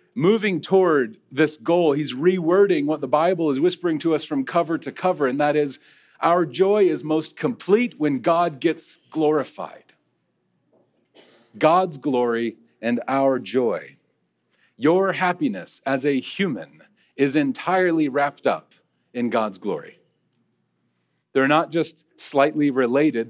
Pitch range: 125-175 Hz